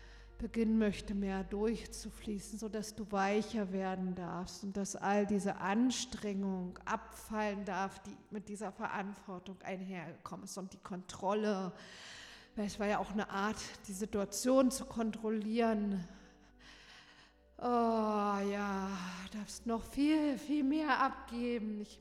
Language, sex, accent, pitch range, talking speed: German, female, German, 195-220 Hz, 125 wpm